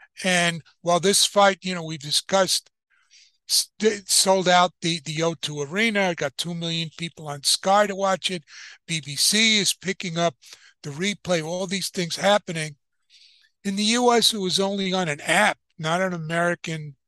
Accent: American